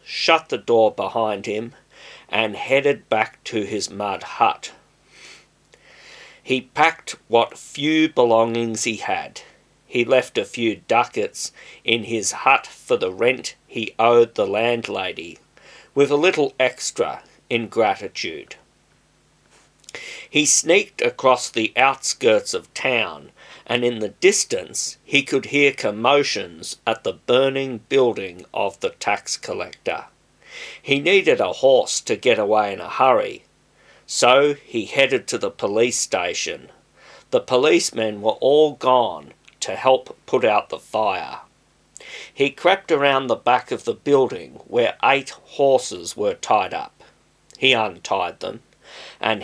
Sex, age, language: male, 50-69, English